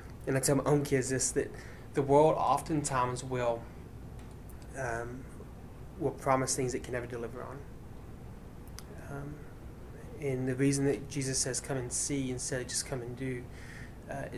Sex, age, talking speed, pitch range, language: male, 20-39, 160 wpm, 125-140 Hz, English